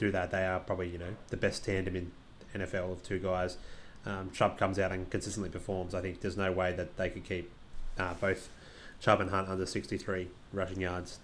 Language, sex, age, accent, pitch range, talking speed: English, male, 20-39, Australian, 90-105 Hz, 220 wpm